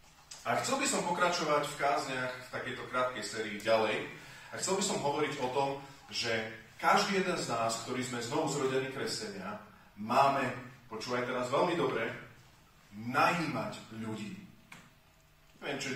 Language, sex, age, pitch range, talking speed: Slovak, male, 40-59, 125-160 Hz, 140 wpm